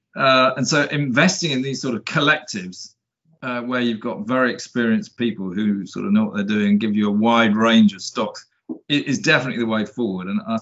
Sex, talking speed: male, 210 wpm